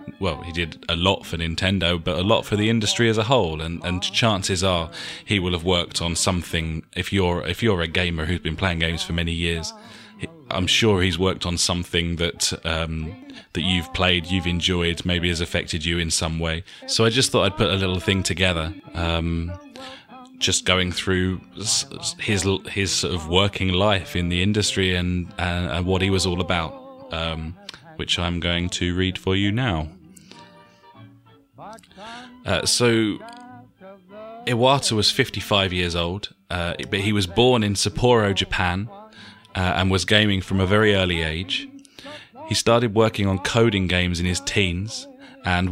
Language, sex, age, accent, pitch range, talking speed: English, male, 20-39, British, 85-110 Hz, 185 wpm